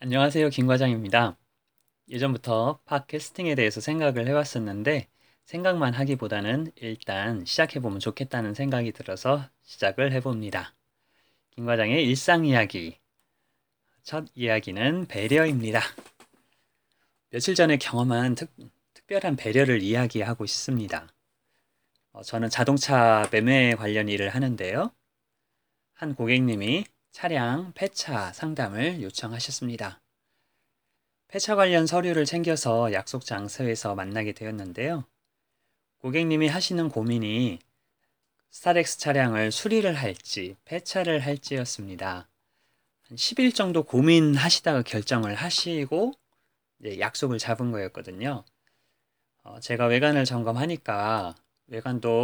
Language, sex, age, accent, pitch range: Korean, male, 30-49, native, 115-155 Hz